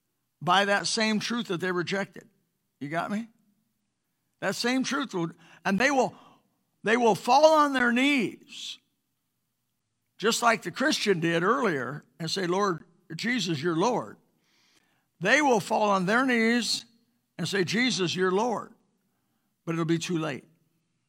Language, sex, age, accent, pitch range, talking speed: English, male, 60-79, American, 160-215 Hz, 145 wpm